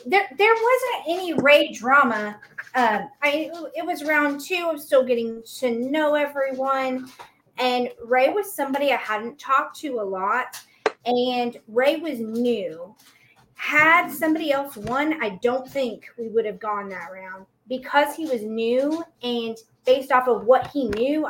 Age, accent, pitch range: 30-49, American, 215-280 Hz